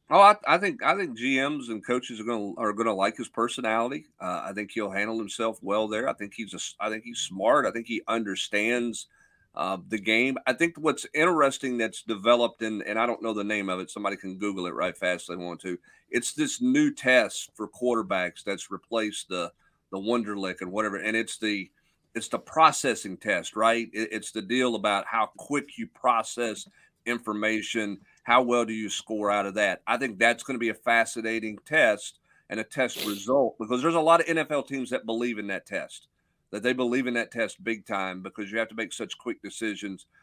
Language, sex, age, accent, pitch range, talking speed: English, male, 40-59, American, 105-120 Hz, 215 wpm